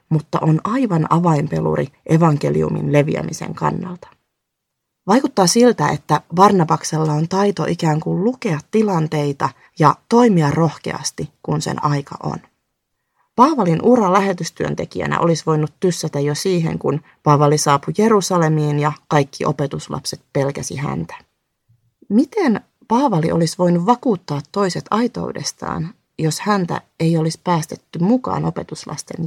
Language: Finnish